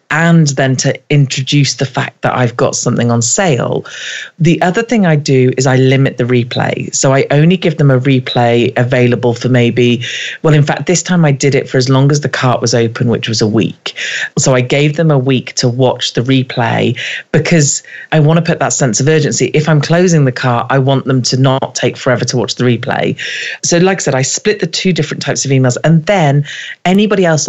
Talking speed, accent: 225 wpm, British